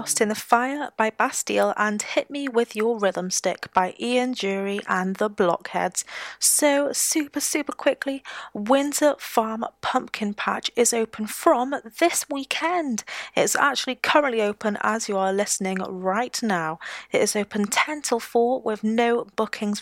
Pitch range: 210-280 Hz